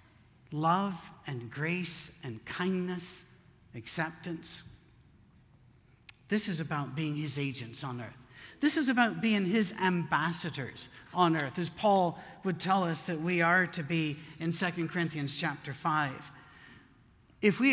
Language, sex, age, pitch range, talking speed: English, male, 60-79, 145-195 Hz, 130 wpm